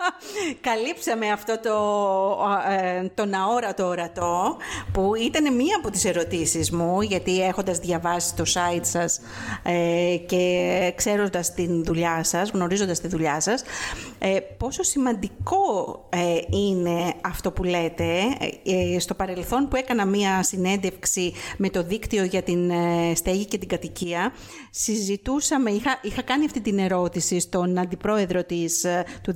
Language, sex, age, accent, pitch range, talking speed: Greek, female, 50-69, native, 180-240 Hz, 120 wpm